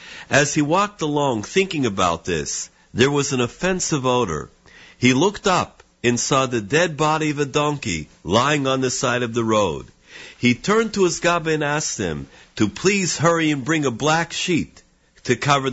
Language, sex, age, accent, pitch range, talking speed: English, male, 50-69, American, 130-175 Hz, 180 wpm